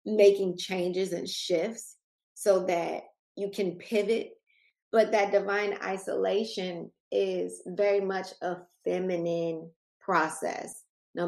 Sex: female